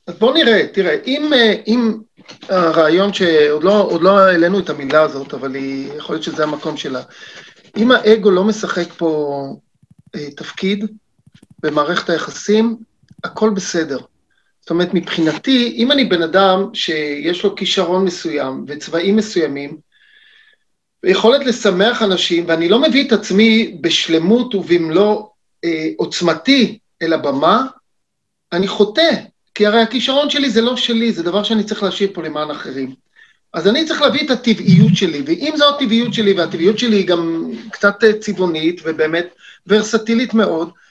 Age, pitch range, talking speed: 40-59, 170-225 Hz, 140 wpm